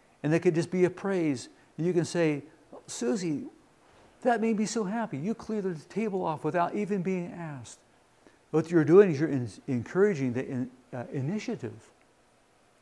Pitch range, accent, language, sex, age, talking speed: 130-180 Hz, American, English, male, 60-79, 175 wpm